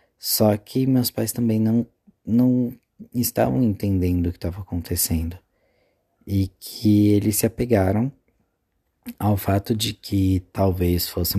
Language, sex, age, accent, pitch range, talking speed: Portuguese, male, 20-39, Brazilian, 95-115 Hz, 125 wpm